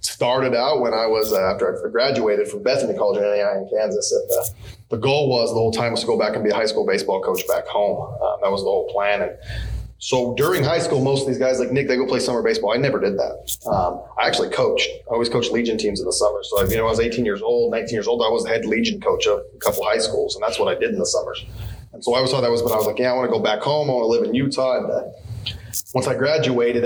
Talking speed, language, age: 300 wpm, English, 20-39